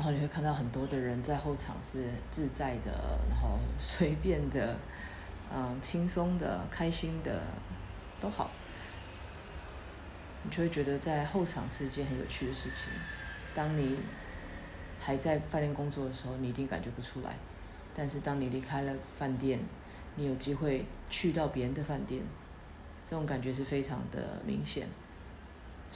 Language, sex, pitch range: Chinese, female, 90-145 Hz